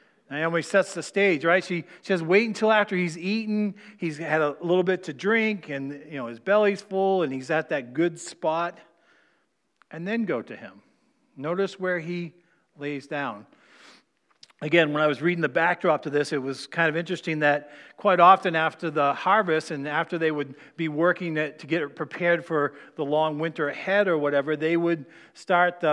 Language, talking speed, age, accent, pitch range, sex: English, 190 wpm, 40-59, American, 150-180 Hz, male